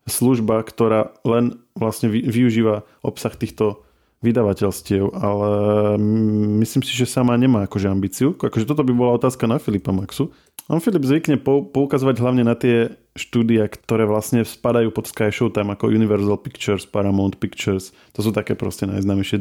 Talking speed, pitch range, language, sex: 150 wpm, 100-120 Hz, Slovak, male